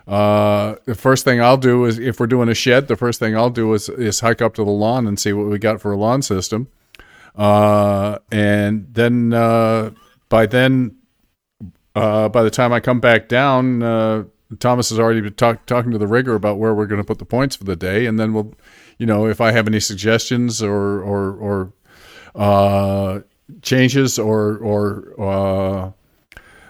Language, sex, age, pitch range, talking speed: English, male, 50-69, 105-120 Hz, 190 wpm